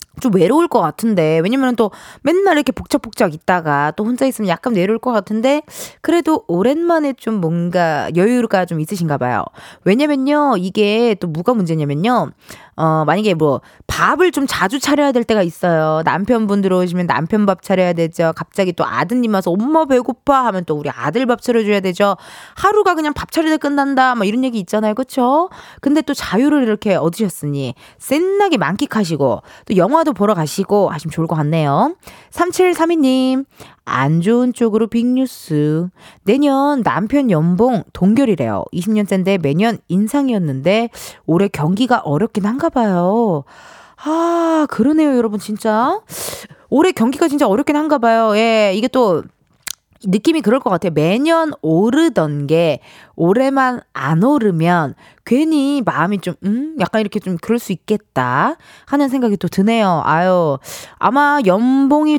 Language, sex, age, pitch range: Korean, female, 20-39, 180-275 Hz